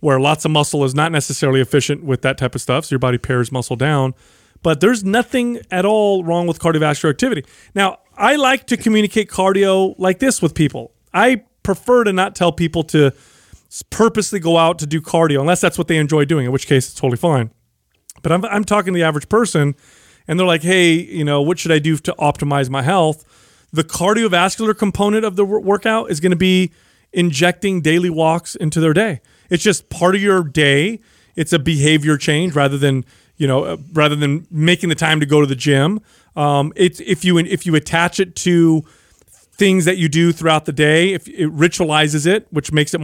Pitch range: 145-185 Hz